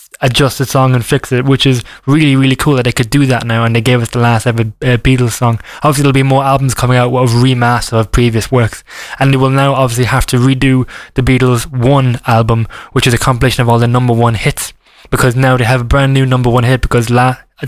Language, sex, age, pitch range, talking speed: English, male, 20-39, 125-145 Hz, 250 wpm